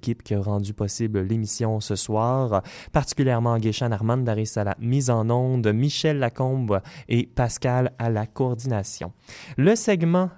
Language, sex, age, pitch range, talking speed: French, male, 20-39, 110-150 Hz, 140 wpm